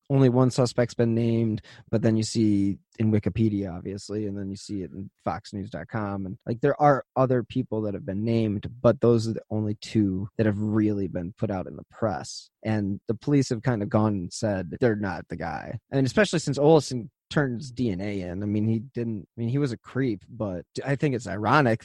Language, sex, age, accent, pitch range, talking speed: English, male, 20-39, American, 105-130 Hz, 215 wpm